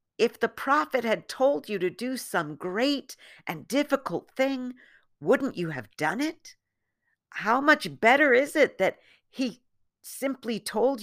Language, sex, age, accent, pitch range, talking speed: English, female, 50-69, American, 120-195 Hz, 145 wpm